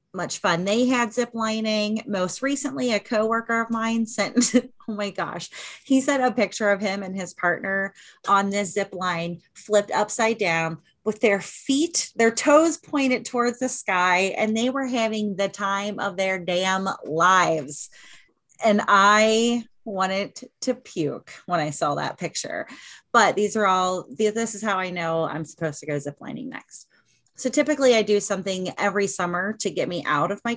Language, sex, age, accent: English, female, 30-49, American